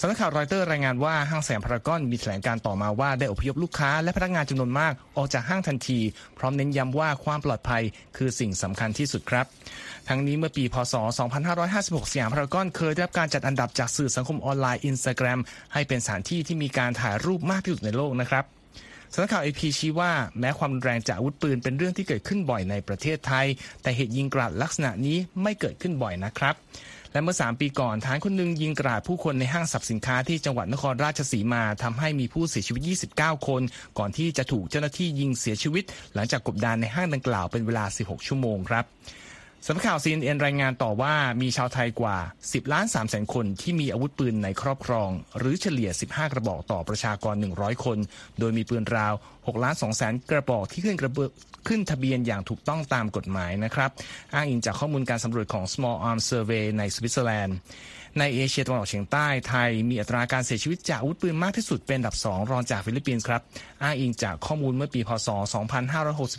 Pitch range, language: 115-150 Hz, Thai